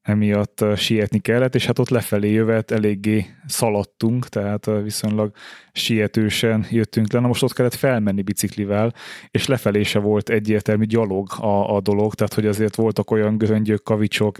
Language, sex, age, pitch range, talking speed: Hungarian, male, 20-39, 105-115 Hz, 155 wpm